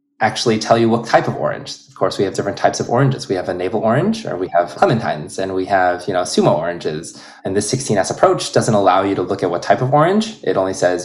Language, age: English, 20-39